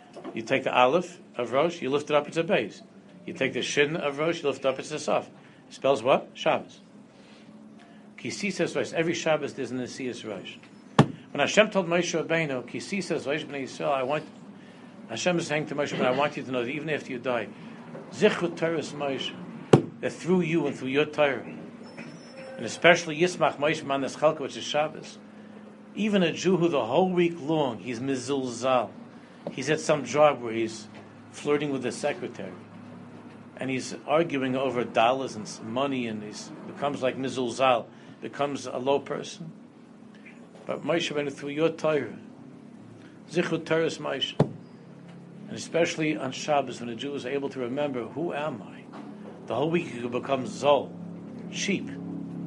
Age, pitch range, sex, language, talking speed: 60-79, 130-175 Hz, male, English, 165 wpm